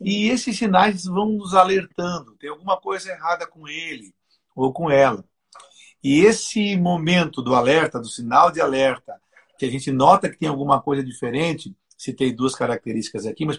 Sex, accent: male, Brazilian